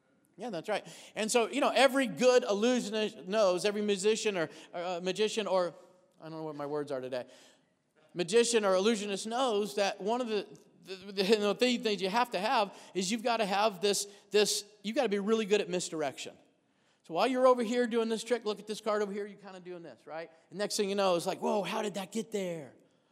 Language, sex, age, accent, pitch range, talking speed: English, male, 40-59, American, 180-230 Hz, 235 wpm